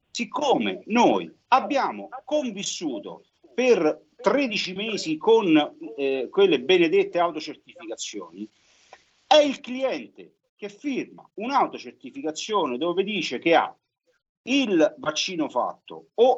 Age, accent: 50-69, native